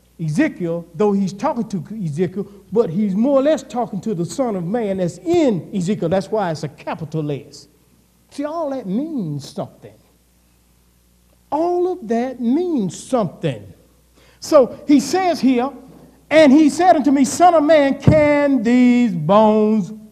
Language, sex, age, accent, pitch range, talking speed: English, male, 50-69, American, 160-270 Hz, 150 wpm